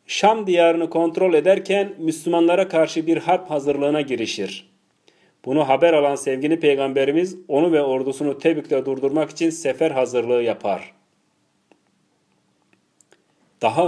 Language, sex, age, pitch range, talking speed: Turkish, male, 40-59, 135-175 Hz, 110 wpm